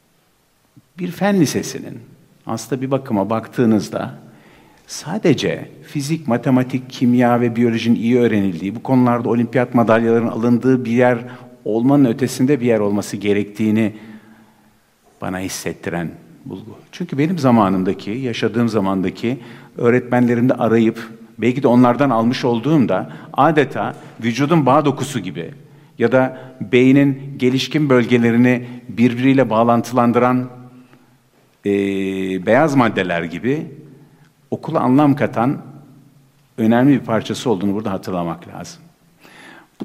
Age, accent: 50-69, native